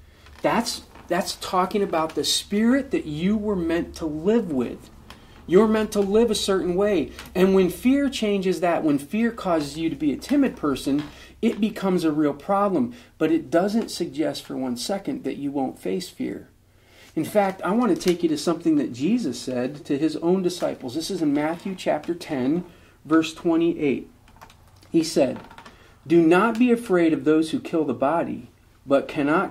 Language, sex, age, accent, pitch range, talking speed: English, male, 40-59, American, 145-205 Hz, 180 wpm